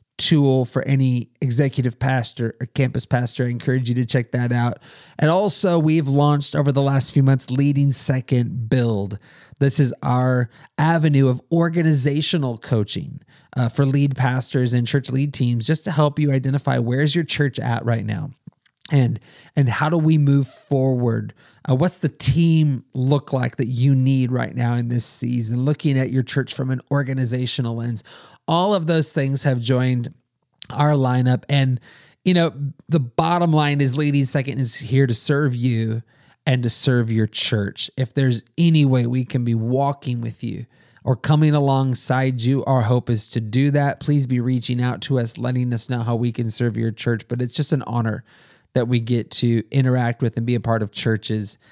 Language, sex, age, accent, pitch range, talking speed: English, male, 30-49, American, 120-145 Hz, 185 wpm